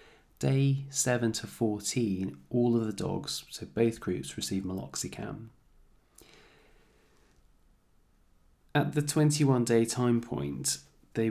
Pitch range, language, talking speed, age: 95-120 Hz, English, 100 wpm, 20-39